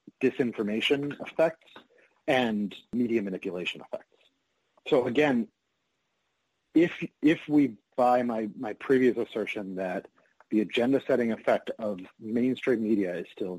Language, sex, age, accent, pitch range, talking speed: English, male, 40-59, American, 110-145 Hz, 110 wpm